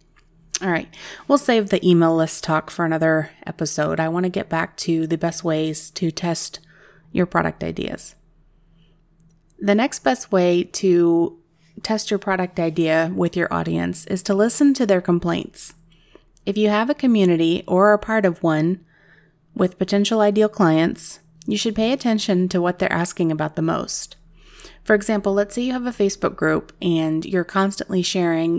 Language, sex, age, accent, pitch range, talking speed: English, female, 30-49, American, 165-200 Hz, 170 wpm